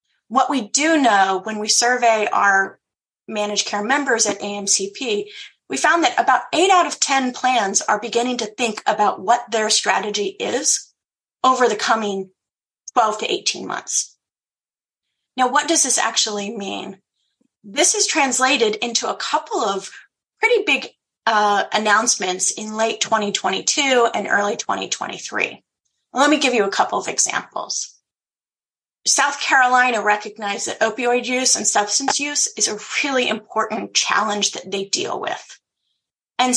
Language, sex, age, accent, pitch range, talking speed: English, female, 30-49, American, 210-270 Hz, 145 wpm